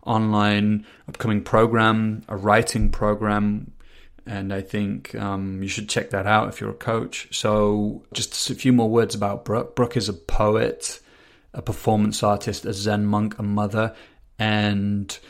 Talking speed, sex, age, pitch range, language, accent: 155 wpm, male, 30-49, 100-110 Hz, English, British